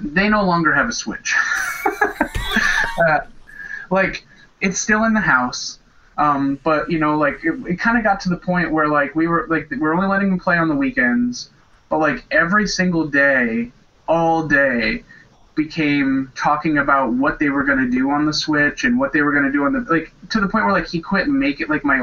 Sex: male